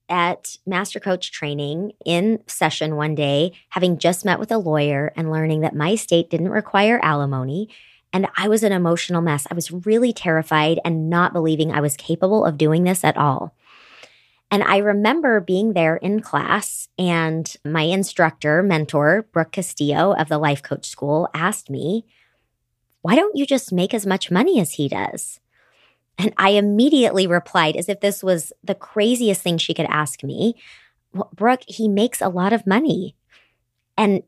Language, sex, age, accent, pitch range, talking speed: English, male, 30-49, American, 155-205 Hz, 170 wpm